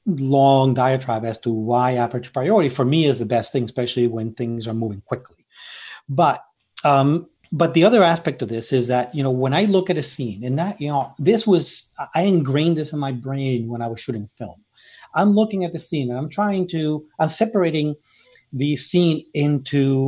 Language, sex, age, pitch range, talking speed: English, male, 40-59, 125-160 Hz, 205 wpm